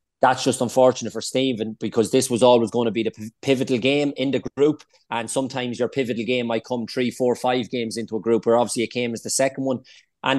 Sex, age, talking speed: male, 30-49, 235 wpm